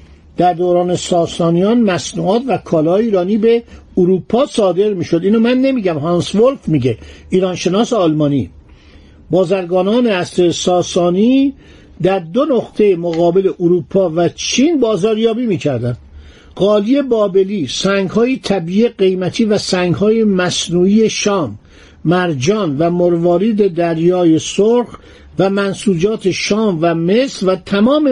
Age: 50-69